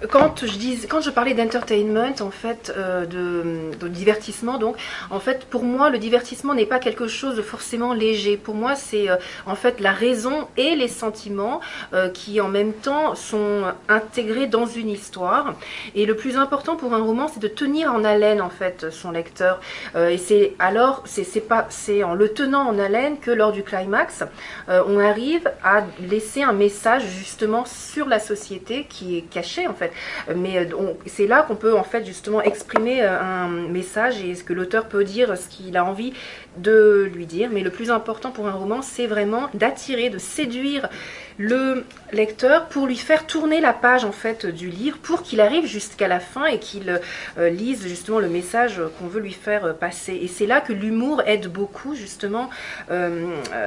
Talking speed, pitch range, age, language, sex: 190 wpm, 195-250 Hz, 40-59, French, female